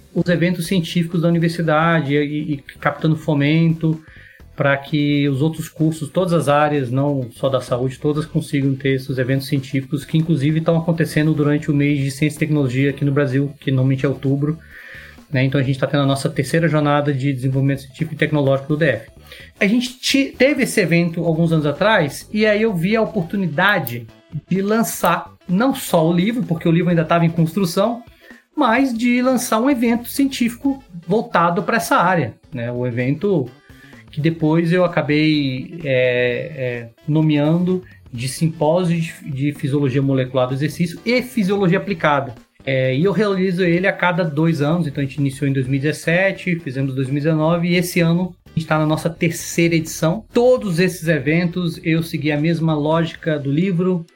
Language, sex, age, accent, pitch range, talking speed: Portuguese, male, 30-49, Brazilian, 140-175 Hz, 170 wpm